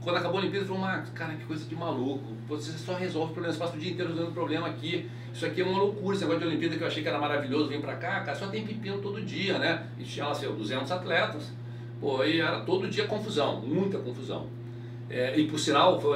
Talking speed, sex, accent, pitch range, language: 260 wpm, male, Brazilian, 120-165 Hz, Portuguese